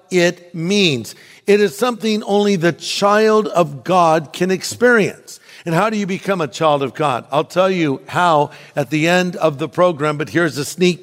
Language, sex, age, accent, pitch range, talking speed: English, male, 50-69, American, 155-185 Hz, 190 wpm